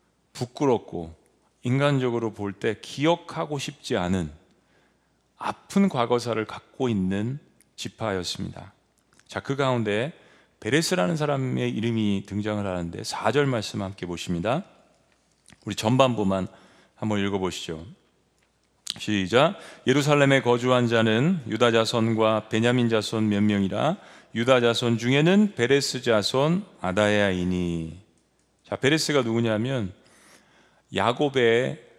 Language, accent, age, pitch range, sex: Korean, native, 40-59, 105-145 Hz, male